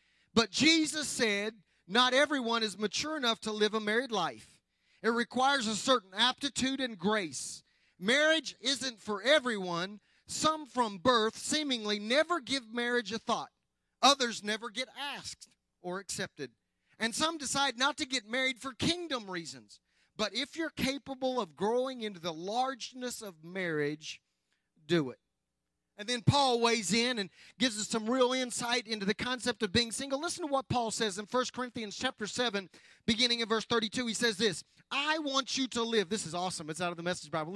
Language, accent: English, American